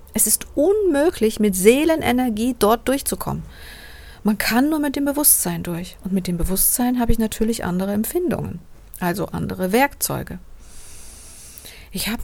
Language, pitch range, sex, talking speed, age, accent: German, 180-235 Hz, female, 135 wpm, 50-69, German